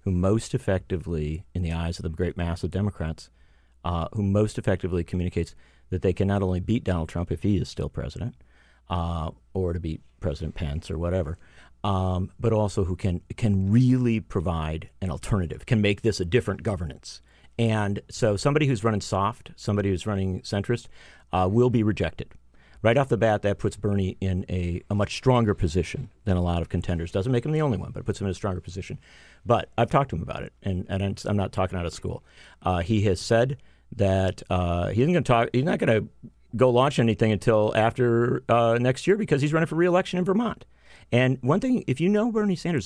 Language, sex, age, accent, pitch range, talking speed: English, male, 40-59, American, 90-125 Hz, 220 wpm